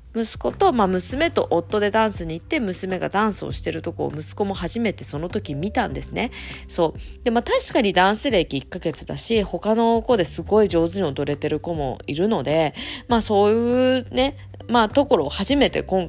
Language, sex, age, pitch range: Japanese, female, 20-39, 165-265 Hz